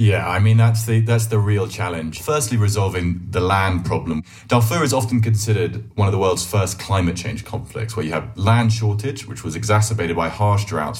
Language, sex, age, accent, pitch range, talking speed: English, male, 30-49, British, 90-115 Hz, 200 wpm